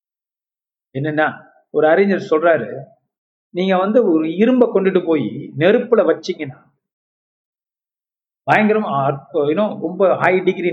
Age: 50-69